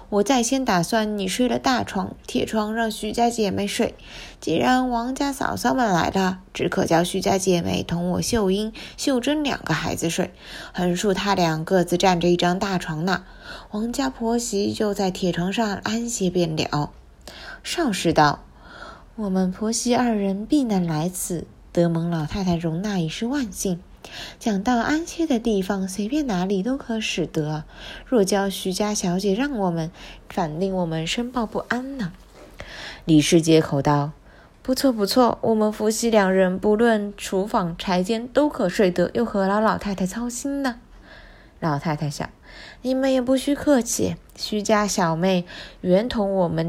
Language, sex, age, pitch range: Chinese, female, 20-39, 180-230 Hz